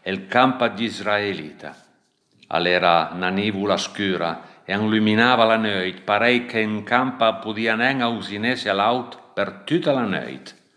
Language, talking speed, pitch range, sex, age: Italian, 125 wpm, 100-115 Hz, male, 60-79